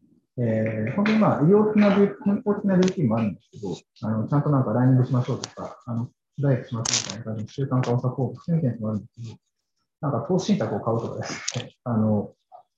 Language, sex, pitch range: Japanese, male, 120-175 Hz